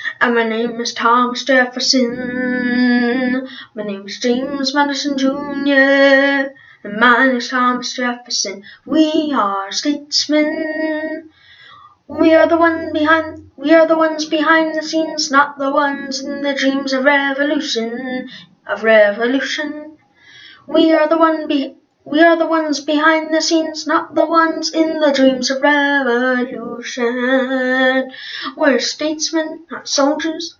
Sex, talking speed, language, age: female, 130 wpm, English, 10-29